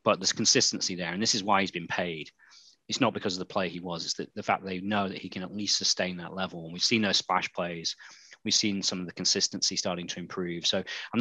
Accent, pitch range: British, 95-110 Hz